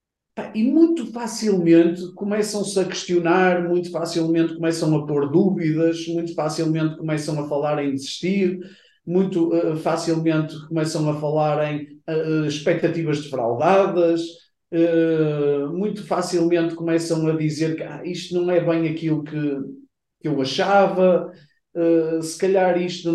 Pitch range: 155-210 Hz